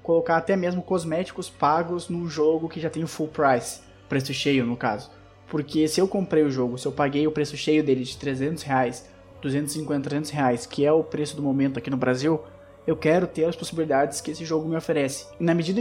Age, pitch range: 20-39, 145-180 Hz